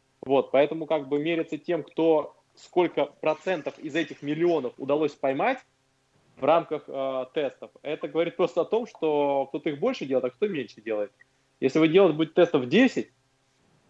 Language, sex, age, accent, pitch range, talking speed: Russian, male, 20-39, native, 130-155 Hz, 160 wpm